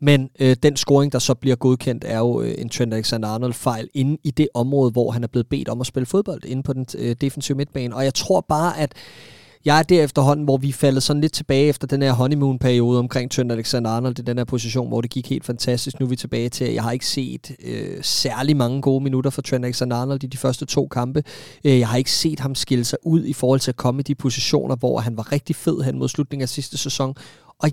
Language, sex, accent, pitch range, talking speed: Danish, male, native, 125-150 Hz, 250 wpm